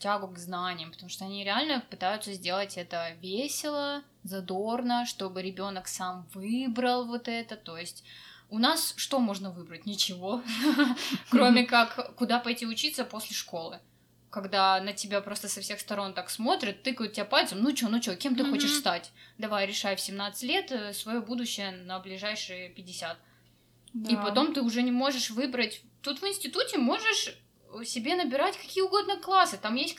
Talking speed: 160 wpm